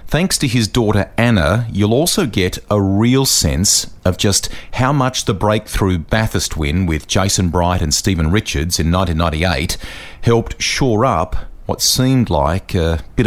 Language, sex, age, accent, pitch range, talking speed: English, male, 40-59, Australian, 90-110 Hz, 160 wpm